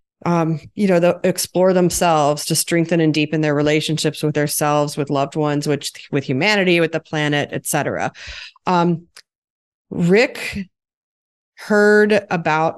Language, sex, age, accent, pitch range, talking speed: English, female, 30-49, American, 150-185 Hz, 130 wpm